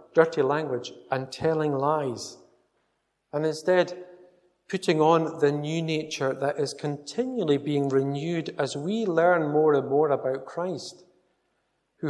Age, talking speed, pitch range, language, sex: 50-69, 130 wpm, 130-160 Hz, English, male